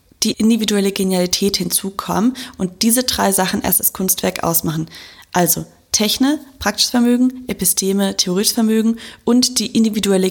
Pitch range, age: 180-230 Hz, 20-39